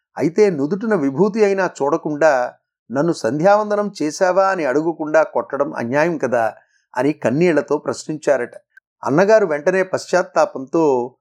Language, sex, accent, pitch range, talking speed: Telugu, male, native, 145-190 Hz, 100 wpm